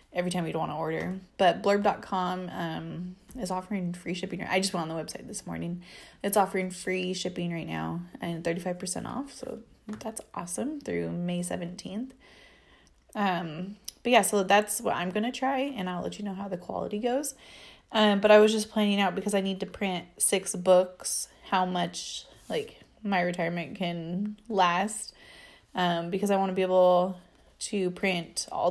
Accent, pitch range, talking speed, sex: American, 175-210 Hz, 180 wpm, female